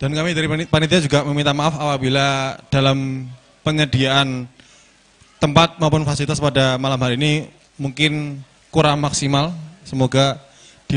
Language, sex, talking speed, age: Indonesian, male, 120 wpm, 20-39